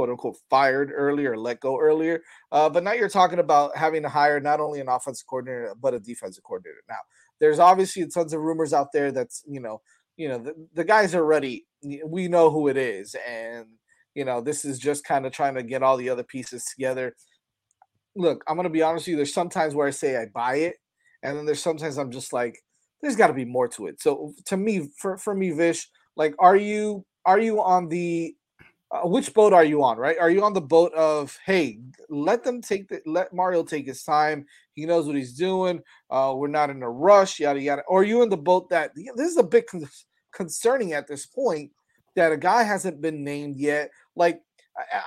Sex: male